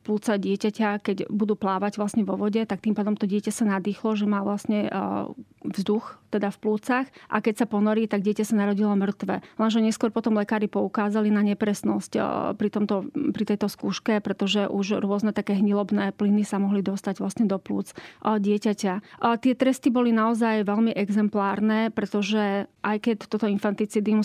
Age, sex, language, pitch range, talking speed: 30-49, female, Slovak, 205-225 Hz, 170 wpm